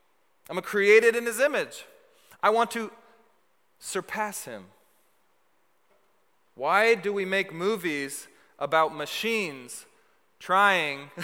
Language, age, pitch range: English, 30-49, 155-245 Hz